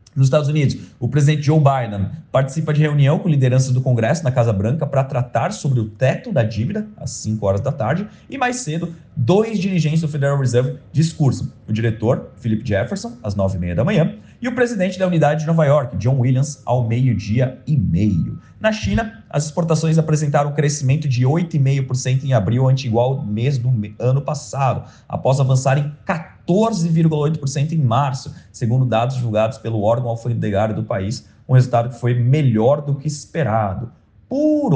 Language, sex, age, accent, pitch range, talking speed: Portuguese, male, 30-49, Brazilian, 120-155 Hz, 170 wpm